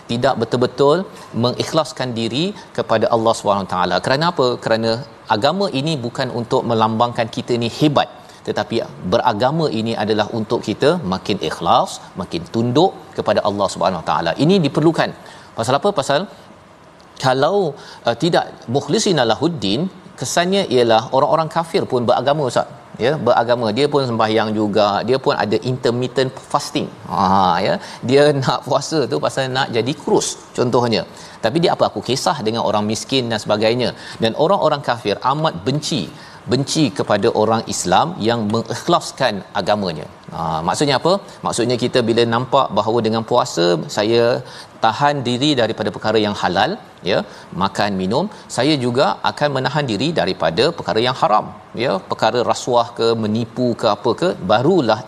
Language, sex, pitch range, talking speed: Malayalam, male, 115-150 Hz, 145 wpm